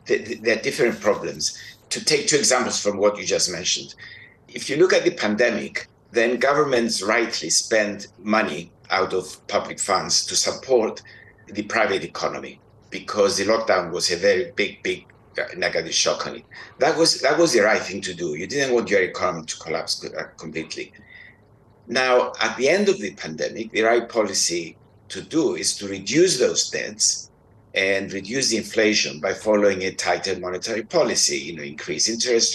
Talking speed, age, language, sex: 170 wpm, 60-79, English, male